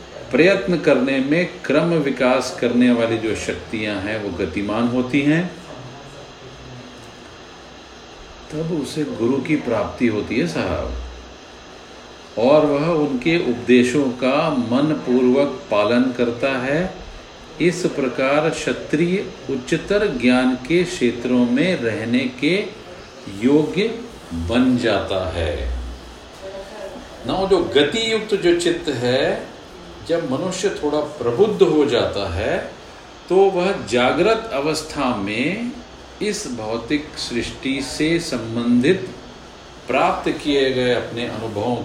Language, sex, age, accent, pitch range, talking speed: Hindi, male, 50-69, native, 120-165 Hz, 110 wpm